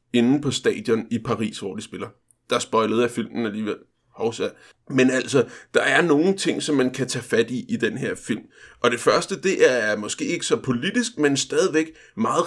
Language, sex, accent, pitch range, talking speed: Danish, male, native, 130-200 Hz, 200 wpm